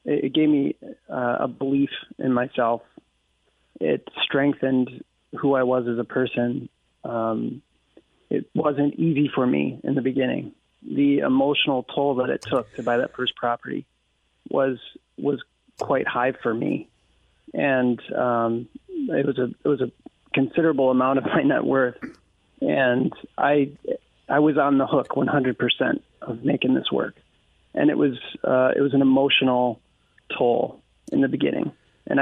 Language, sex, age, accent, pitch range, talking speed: English, male, 30-49, American, 125-140 Hz, 155 wpm